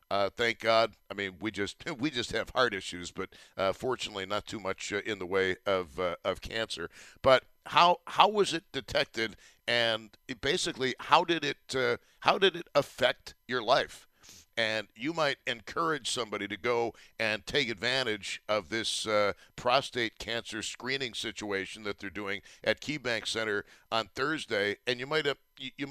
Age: 60-79